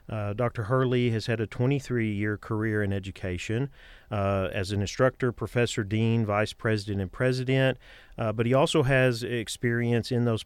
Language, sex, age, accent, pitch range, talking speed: English, male, 40-59, American, 105-120 Hz, 160 wpm